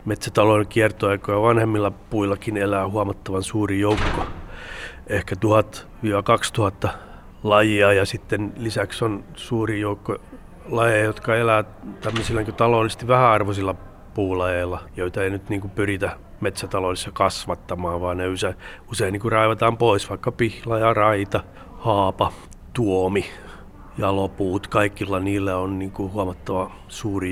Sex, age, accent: male, 30-49, native